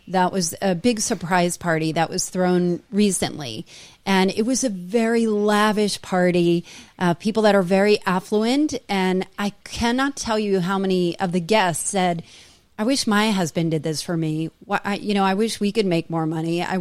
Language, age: English, 30-49